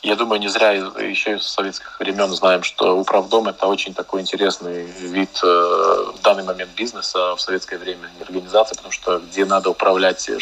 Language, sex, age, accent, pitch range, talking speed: Russian, male, 20-39, native, 90-100 Hz, 175 wpm